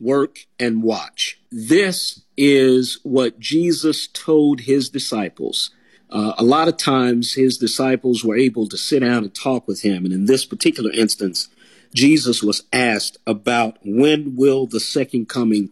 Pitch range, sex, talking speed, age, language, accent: 110-135 Hz, male, 155 wpm, 50-69, English, American